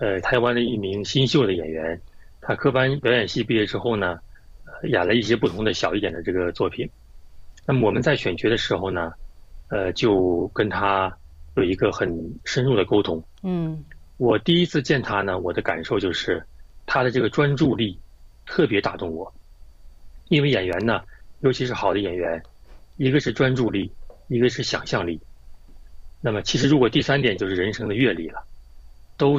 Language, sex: Chinese, male